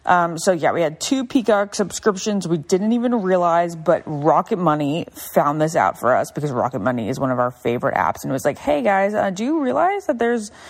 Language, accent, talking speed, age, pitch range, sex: English, American, 230 wpm, 20-39, 150-220 Hz, female